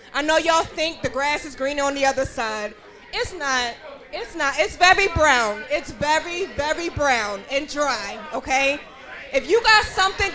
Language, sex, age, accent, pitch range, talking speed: English, female, 20-39, American, 275-365 Hz, 175 wpm